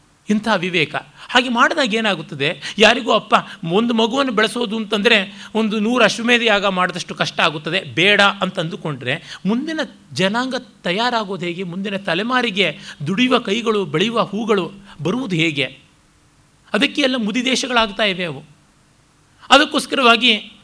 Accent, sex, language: native, male, Kannada